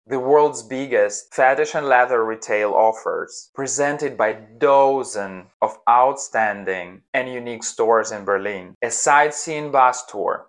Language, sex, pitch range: English, male, 115-145 Hz